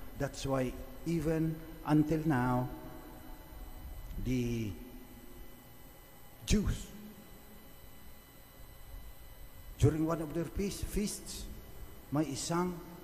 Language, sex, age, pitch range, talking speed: English, male, 50-69, 125-155 Hz, 65 wpm